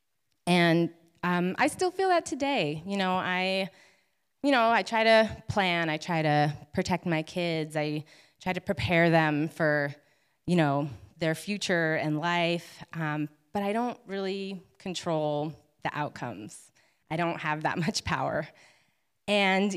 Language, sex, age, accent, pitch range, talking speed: English, female, 20-39, American, 155-200 Hz, 150 wpm